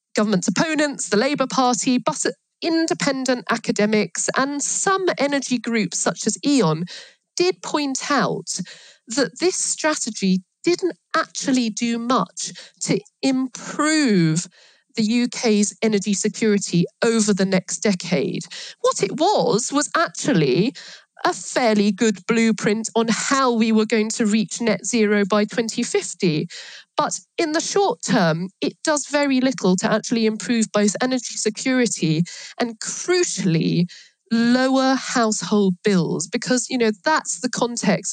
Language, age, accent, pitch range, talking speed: English, 40-59, British, 195-255 Hz, 125 wpm